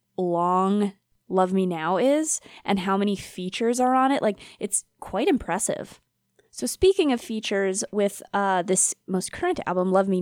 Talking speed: 165 wpm